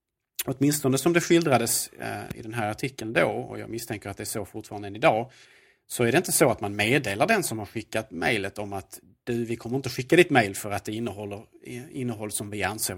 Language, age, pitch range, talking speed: Swedish, 30-49, 105-130 Hz, 225 wpm